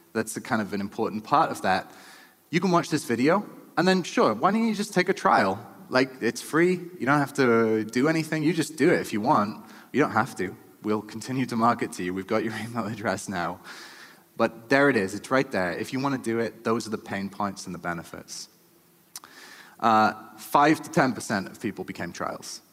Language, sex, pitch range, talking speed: English, male, 110-160 Hz, 220 wpm